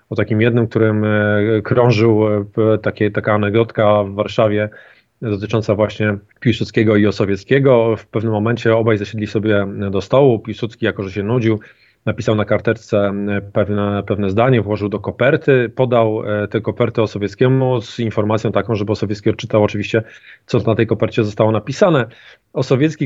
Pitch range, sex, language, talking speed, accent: 105-115 Hz, male, Polish, 145 wpm, native